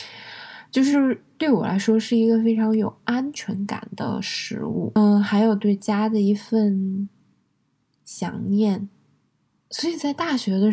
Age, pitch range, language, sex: 20-39, 200-235 Hz, Chinese, female